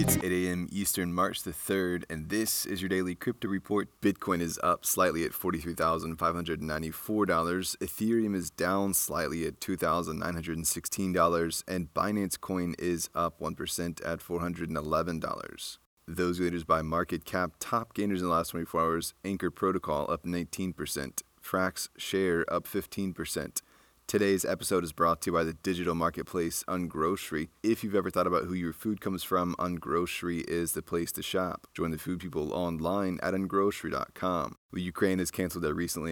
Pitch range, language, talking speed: 80-95 Hz, English, 155 wpm